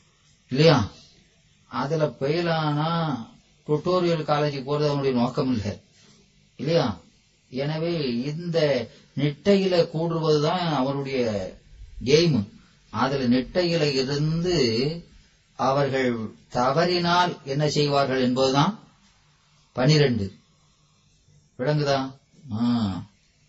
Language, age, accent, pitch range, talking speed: Tamil, 30-49, native, 110-145 Hz, 65 wpm